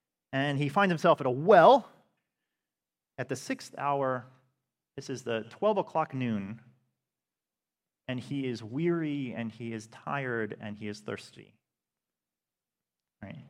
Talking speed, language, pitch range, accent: 135 wpm, English, 120-185 Hz, American